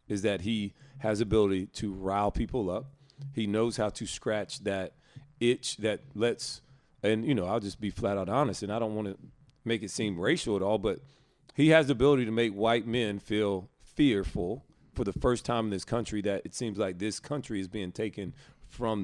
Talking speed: 210 wpm